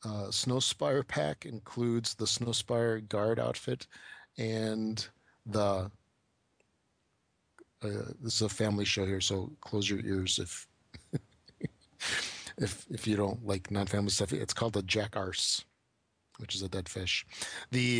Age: 40-59